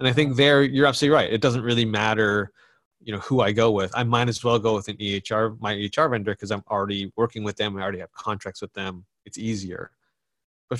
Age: 30-49